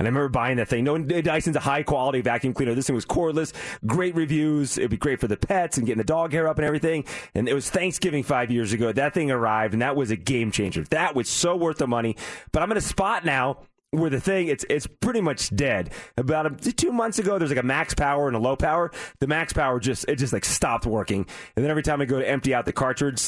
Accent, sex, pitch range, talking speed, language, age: American, male, 125-170 Hz, 260 wpm, English, 30-49